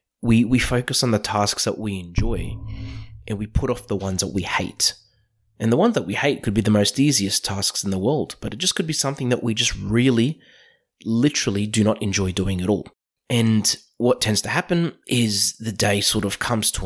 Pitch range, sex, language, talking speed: 95-120 Hz, male, English, 220 wpm